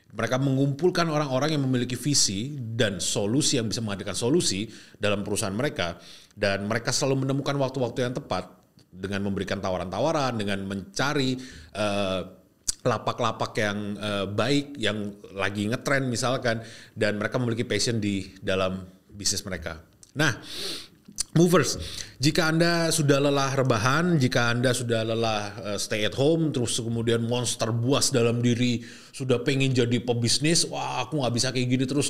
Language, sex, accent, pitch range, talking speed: Indonesian, male, native, 105-135 Hz, 140 wpm